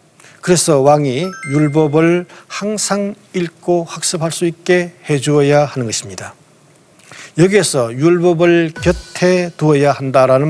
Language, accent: Korean, native